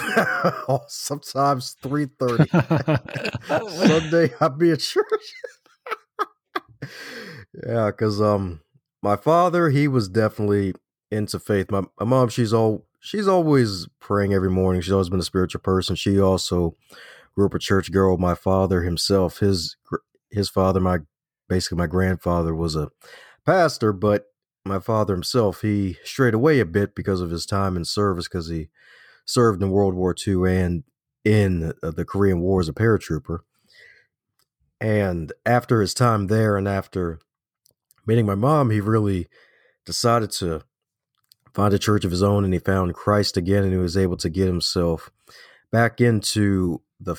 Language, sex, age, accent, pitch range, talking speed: English, male, 30-49, American, 90-115 Hz, 150 wpm